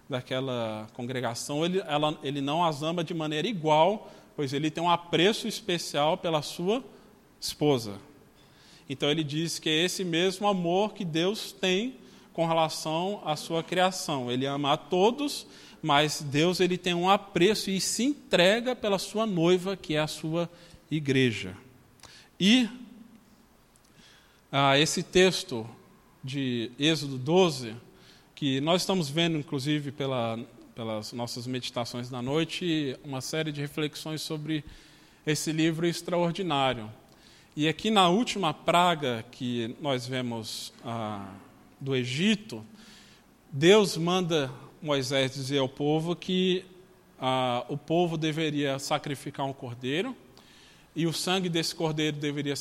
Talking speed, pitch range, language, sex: 130 wpm, 135-180 Hz, Portuguese, male